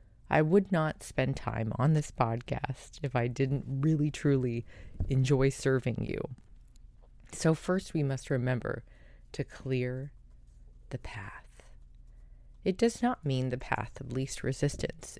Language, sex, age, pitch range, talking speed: English, female, 20-39, 120-150 Hz, 135 wpm